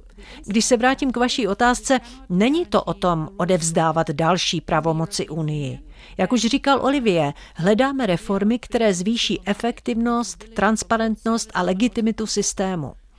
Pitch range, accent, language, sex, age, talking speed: 180-235 Hz, native, Czech, female, 50-69, 125 wpm